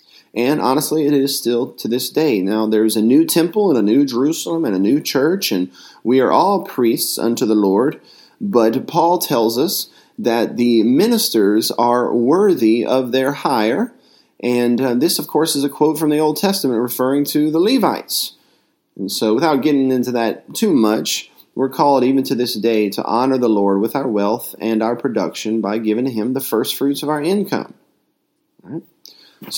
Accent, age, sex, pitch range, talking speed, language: American, 30-49, male, 120-165 Hz, 185 wpm, English